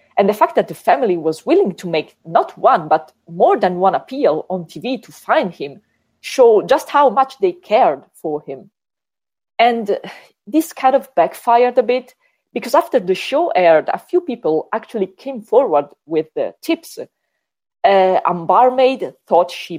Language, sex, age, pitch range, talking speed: English, female, 40-59, 170-270 Hz, 170 wpm